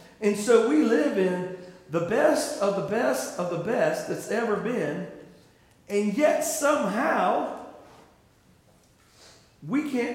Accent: American